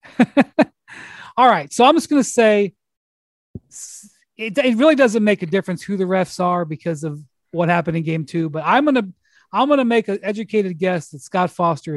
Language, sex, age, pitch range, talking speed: English, male, 40-59, 165-210 Hz, 200 wpm